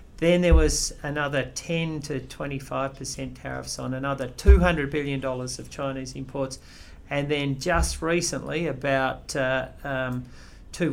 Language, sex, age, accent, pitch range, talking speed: English, male, 40-59, Australian, 125-145 Hz, 120 wpm